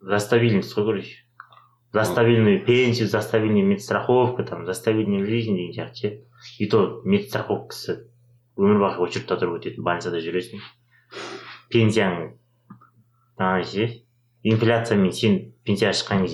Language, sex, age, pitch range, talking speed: Russian, male, 30-49, 100-120 Hz, 95 wpm